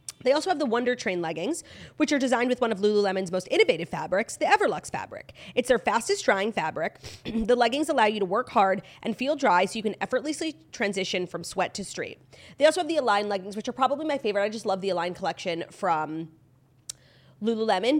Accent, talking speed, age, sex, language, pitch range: American, 210 wpm, 30-49, female, English, 185-250 Hz